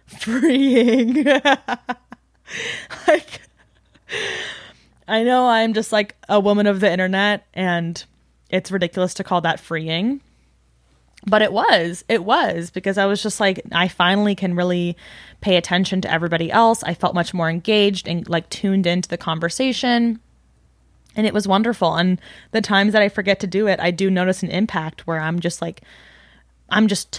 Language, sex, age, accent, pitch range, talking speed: English, female, 20-39, American, 170-215 Hz, 160 wpm